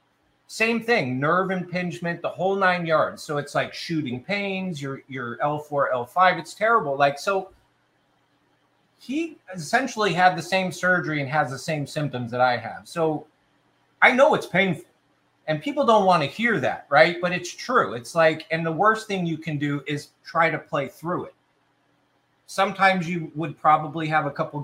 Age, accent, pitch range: 30-49, American, 140-180 Hz